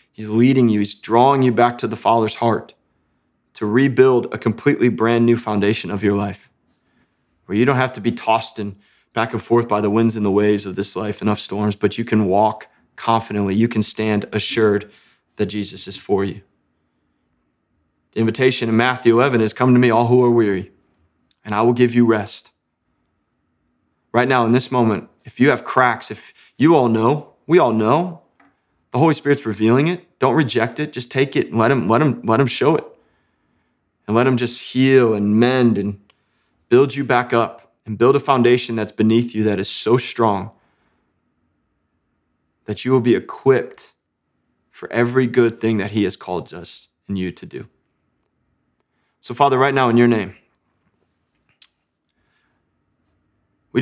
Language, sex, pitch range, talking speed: English, male, 100-125 Hz, 175 wpm